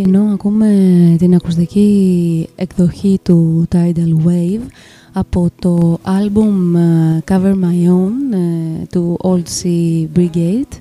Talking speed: 110 wpm